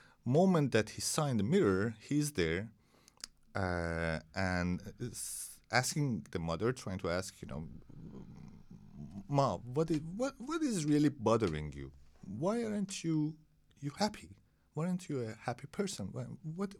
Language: Danish